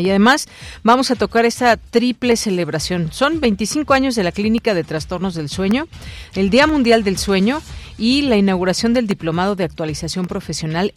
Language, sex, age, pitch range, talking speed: Spanish, female, 40-59, 170-225 Hz, 170 wpm